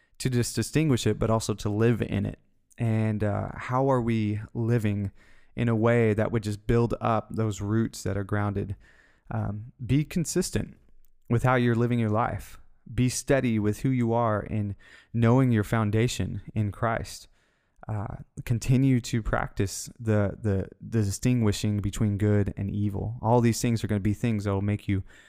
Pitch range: 100-115 Hz